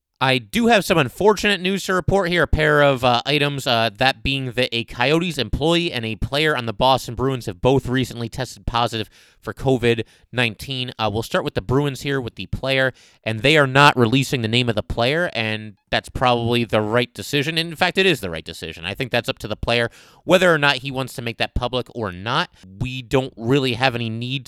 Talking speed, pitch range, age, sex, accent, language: 225 wpm, 115-145 Hz, 30-49, male, American, English